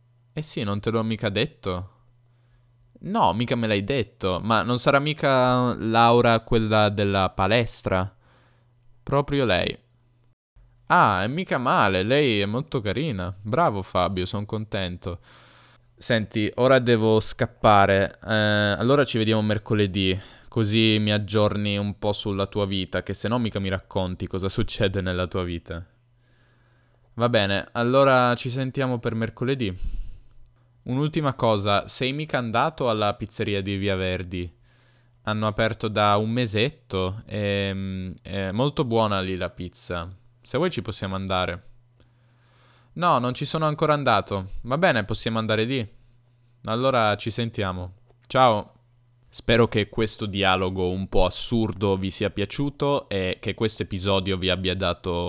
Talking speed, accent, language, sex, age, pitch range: 140 wpm, native, Italian, male, 10-29, 100-120 Hz